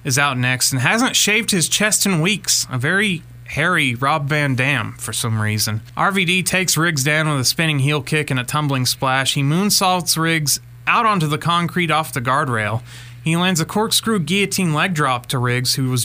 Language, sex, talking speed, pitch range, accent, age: English, male, 200 wpm, 125-165 Hz, American, 30-49